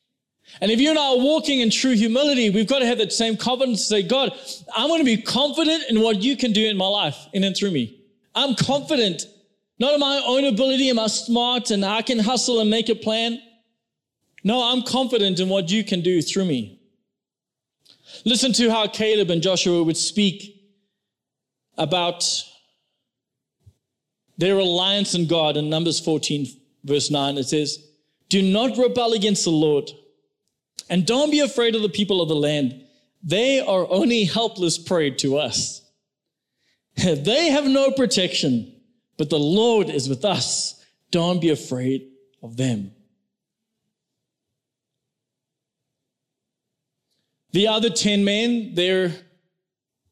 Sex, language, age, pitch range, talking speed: male, English, 20-39, 155-230 Hz, 155 wpm